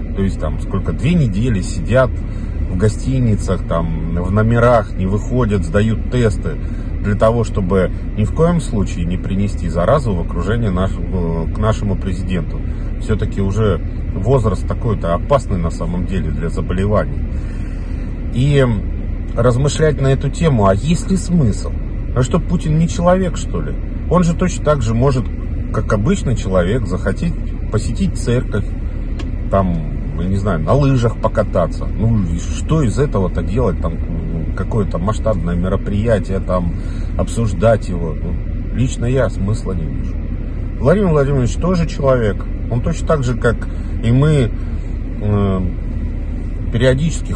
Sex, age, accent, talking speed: male, 40-59, native, 135 wpm